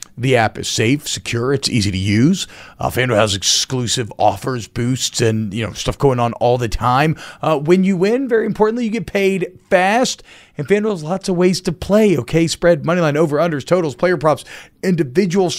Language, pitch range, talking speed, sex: English, 130-180 Hz, 200 wpm, male